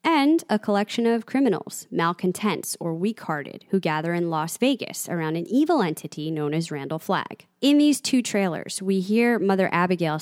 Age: 20-39